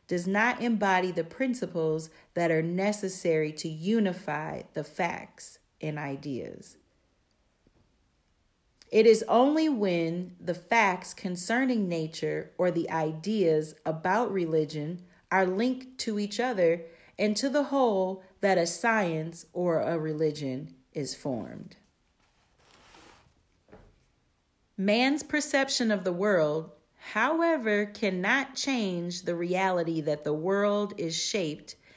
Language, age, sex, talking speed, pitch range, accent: English, 40-59, female, 110 wpm, 165-220 Hz, American